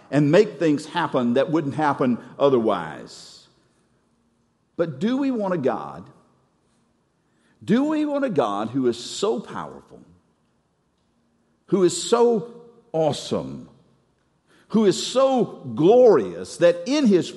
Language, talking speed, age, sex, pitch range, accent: English, 115 wpm, 50-69, male, 150-230 Hz, American